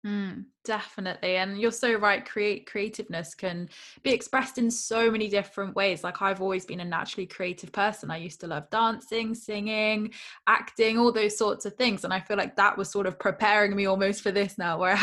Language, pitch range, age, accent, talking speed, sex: English, 190-230 Hz, 10-29, British, 205 wpm, female